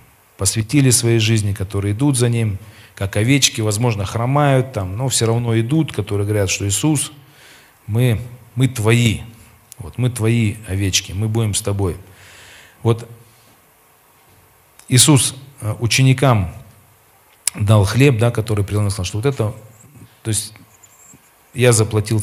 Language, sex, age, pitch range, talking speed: Russian, male, 40-59, 105-125 Hz, 120 wpm